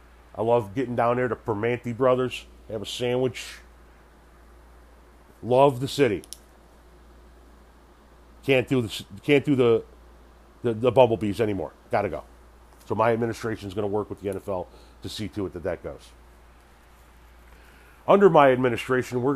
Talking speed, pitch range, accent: 150 wpm, 70-115 Hz, American